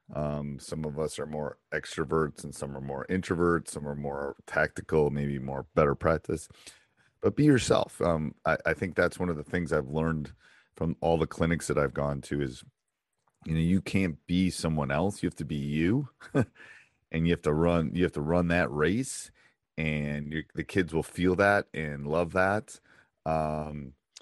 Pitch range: 75-90 Hz